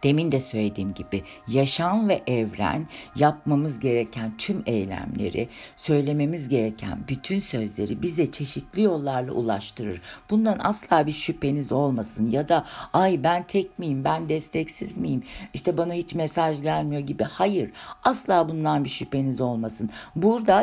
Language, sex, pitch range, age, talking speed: Turkish, female, 125-170 Hz, 60-79, 135 wpm